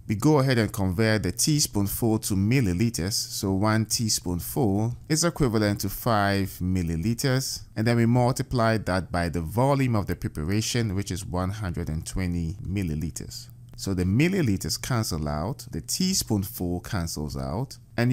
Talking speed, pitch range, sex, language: 140 wpm, 90-120 Hz, male, English